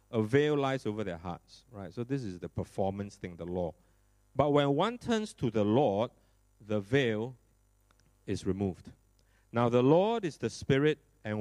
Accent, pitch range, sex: Malaysian, 100-130 Hz, male